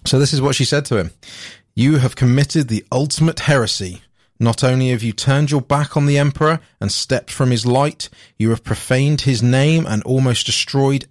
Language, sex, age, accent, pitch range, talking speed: English, male, 30-49, British, 110-135 Hz, 200 wpm